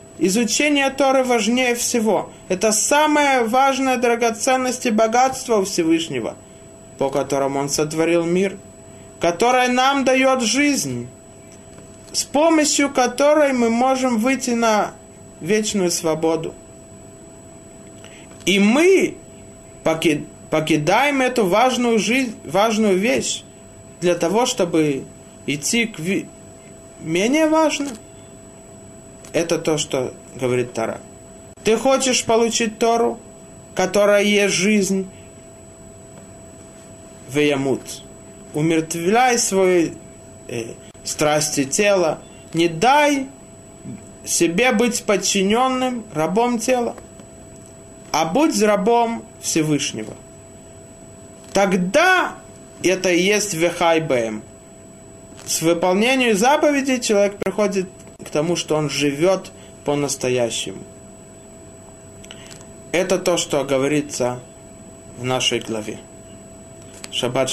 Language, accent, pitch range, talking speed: Russian, native, 145-245 Hz, 85 wpm